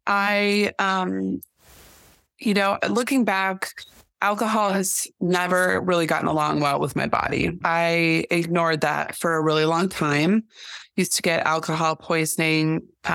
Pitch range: 160-200 Hz